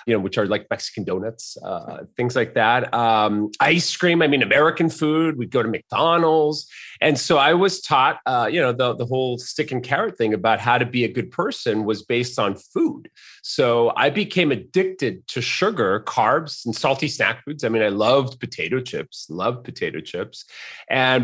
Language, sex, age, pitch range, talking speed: English, male, 30-49, 115-150 Hz, 195 wpm